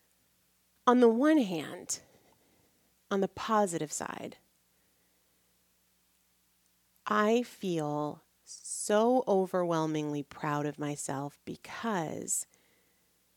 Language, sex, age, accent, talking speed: English, female, 30-49, American, 70 wpm